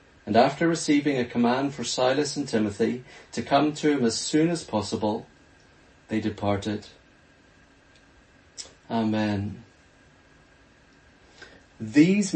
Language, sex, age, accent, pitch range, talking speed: English, male, 40-59, British, 120-165 Hz, 100 wpm